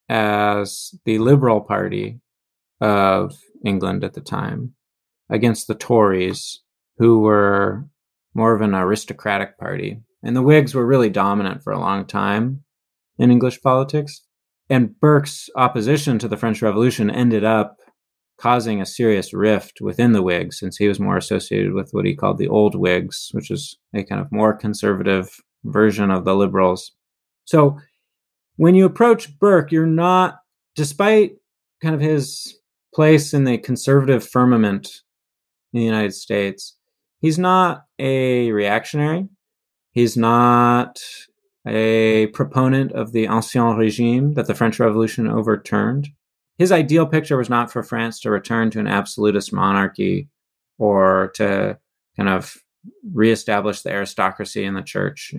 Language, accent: English, American